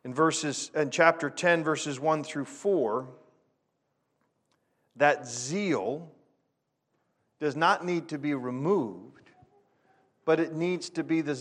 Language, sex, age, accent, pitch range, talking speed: English, male, 40-59, American, 150-190 Hz, 120 wpm